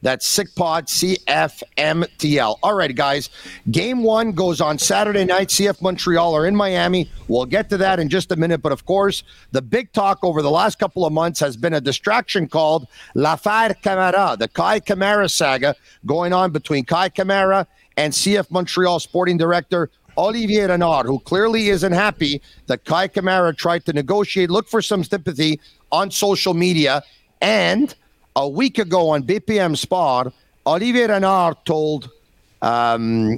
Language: French